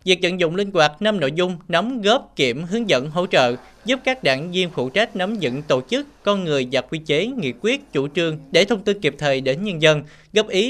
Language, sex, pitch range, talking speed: Vietnamese, male, 155-245 Hz, 245 wpm